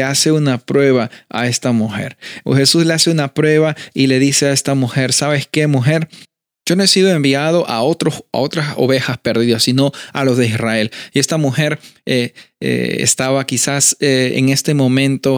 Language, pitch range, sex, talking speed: Spanish, 125-150 Hz, male, 185 wpm